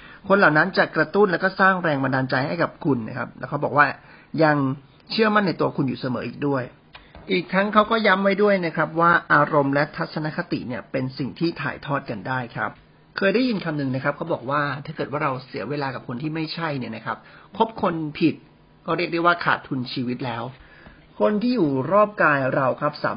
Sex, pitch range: male, 130-170 Hz